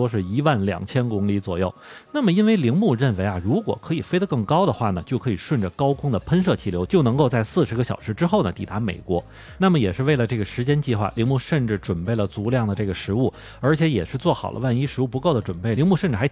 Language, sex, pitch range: Chinese, male, 105-145 Hz